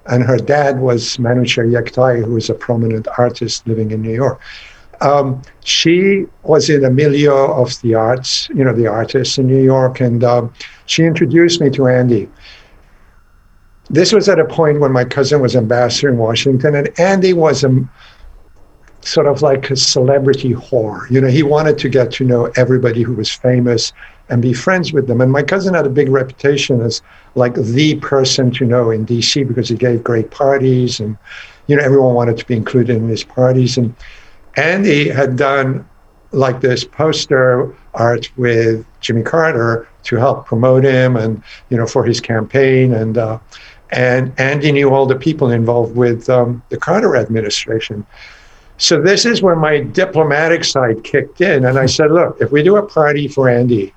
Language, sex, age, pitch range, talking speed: English, male, 60-79, 120-140 Hz, 180 wpm